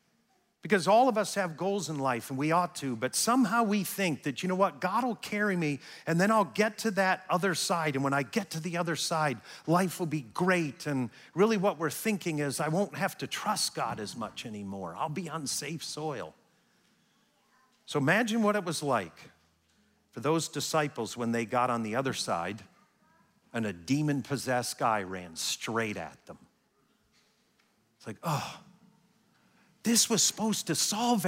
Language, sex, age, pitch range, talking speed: English, male, 50-69, 135-210 Hz, 185 wpm